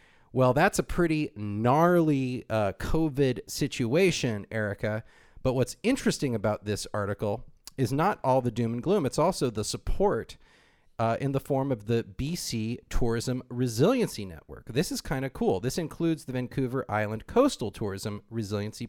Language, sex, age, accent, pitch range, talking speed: English, male, 40-59, American, 110-150 Hz, 155 wpm